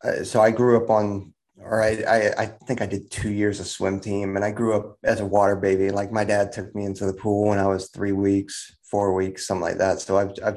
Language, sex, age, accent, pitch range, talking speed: English, male, 30-49, American, 100-120 Hz, 265 wpm